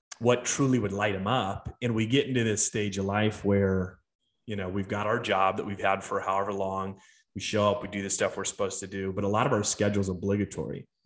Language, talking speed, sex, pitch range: English, 250 wpm, male, 100-115 Hz